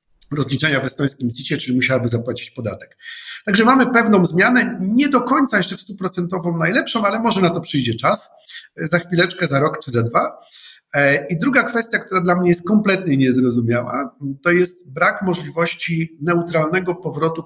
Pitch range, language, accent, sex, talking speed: 135-175 Hz, Polish, native, male, 160 wpm